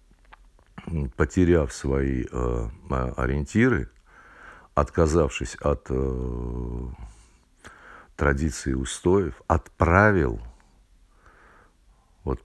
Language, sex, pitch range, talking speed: Russian, male, 65-90 Hz, 60 wpm